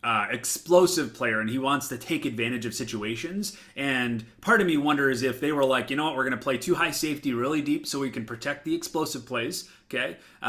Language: English